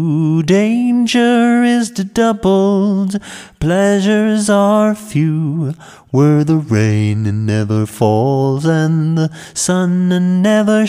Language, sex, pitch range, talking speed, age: English, male, 160-220 Hz, 85 wpm, 30-49